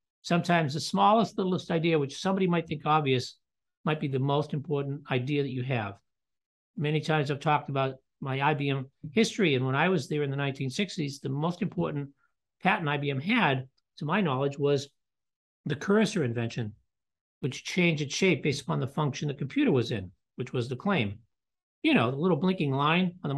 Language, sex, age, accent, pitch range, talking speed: English, male, 50-69, American, 130-170 Hz, 185 wpm